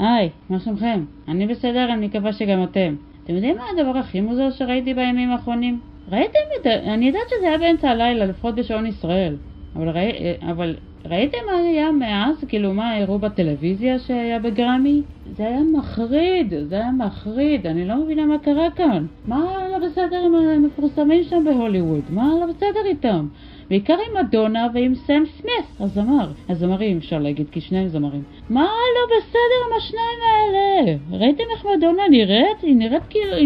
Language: Hebrew